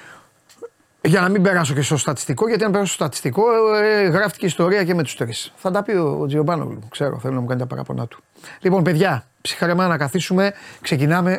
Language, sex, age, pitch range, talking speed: Greek, male, 30-49, 140-190 Hz, 205 wpm